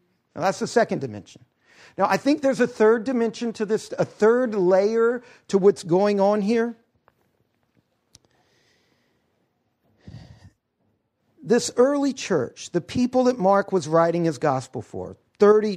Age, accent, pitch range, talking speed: 50-69, American, 170-245 Hz, 135 wpm